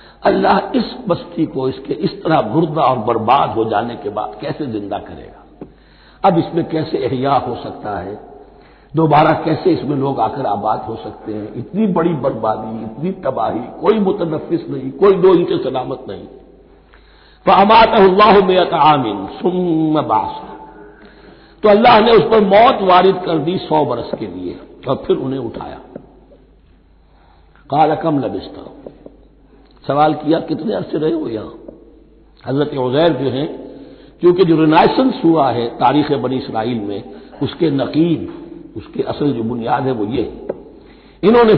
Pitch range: 125-185 Hz